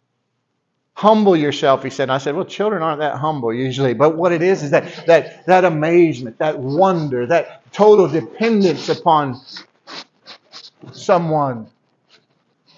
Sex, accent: male, American